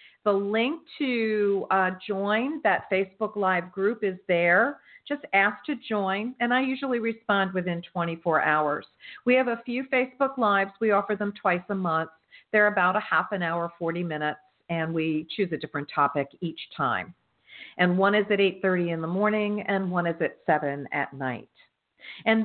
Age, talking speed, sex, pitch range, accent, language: 50-69, 175 wpm, female, 180-230 Hz, American, English